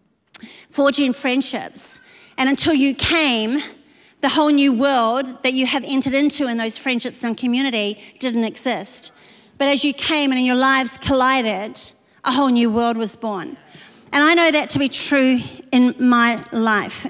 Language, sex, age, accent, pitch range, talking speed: English, female, 40-59, Australian, 235-280 Hz, 165 wpm